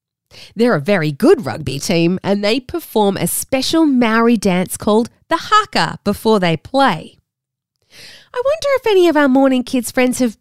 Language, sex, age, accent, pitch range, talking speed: English, female, 20-39, Australian, 185-290 Hz, 165 wpm